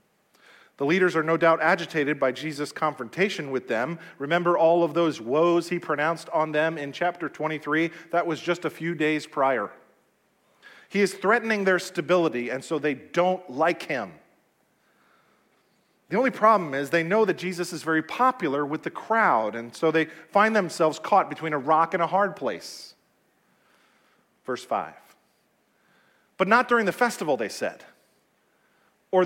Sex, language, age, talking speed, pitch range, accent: male, English, 40-59, 160 wpm, 160-200 Hz, American